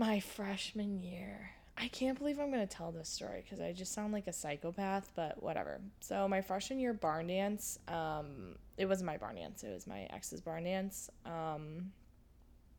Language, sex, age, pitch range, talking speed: English, female, 10-29, 170-235 Hz, 185 wpm